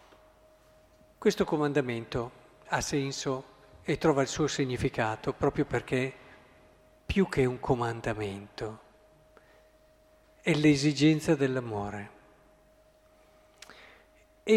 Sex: male